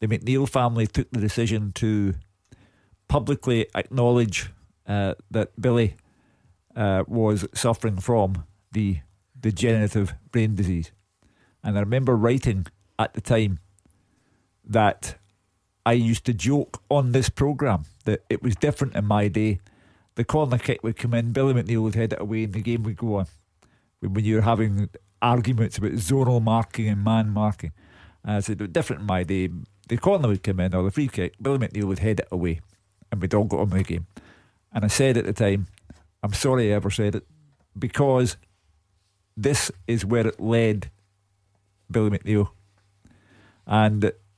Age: 50-69